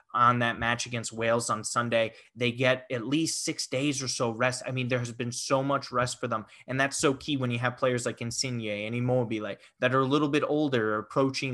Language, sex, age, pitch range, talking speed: English, male, 20-39, 120-135 Hz, 240 wpm